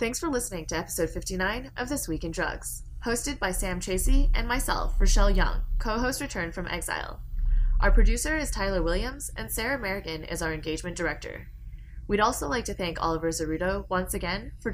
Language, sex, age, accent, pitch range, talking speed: English, female, 20-39, American, 160-220 Hz, 185 wpm